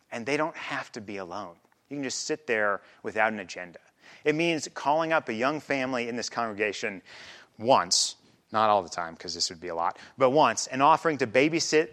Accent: American